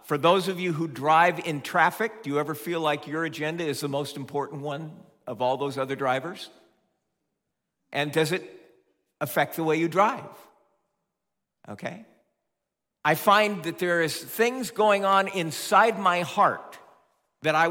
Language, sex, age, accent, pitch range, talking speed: English, male, 50-69, American, 145-205 Hz, 160 wpm